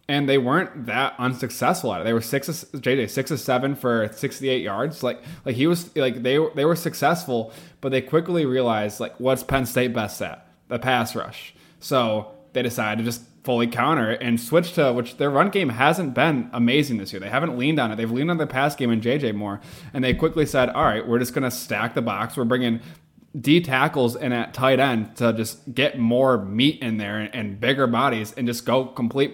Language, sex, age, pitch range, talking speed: English, male, 20-39, 115-135 Hz, 225 wpm